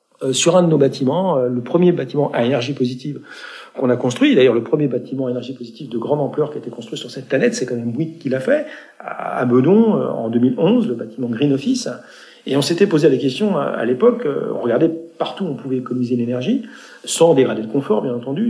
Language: French